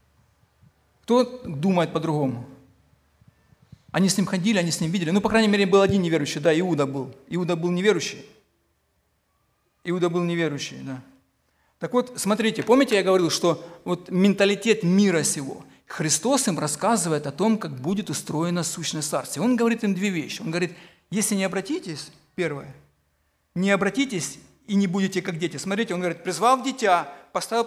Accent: native